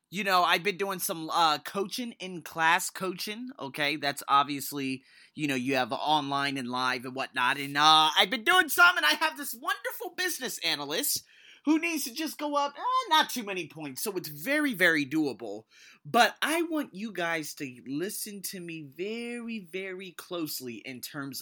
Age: 30-49